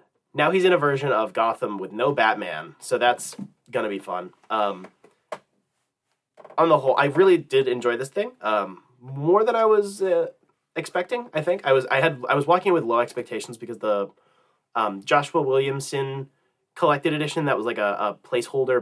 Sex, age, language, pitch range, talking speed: male, 30-49, English, 120-180 Hz, 180 wpm